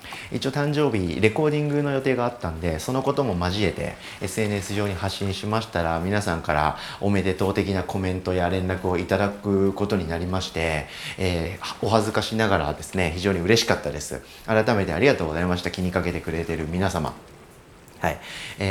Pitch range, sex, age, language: 85-110 Hz, male, 40-59, Japanese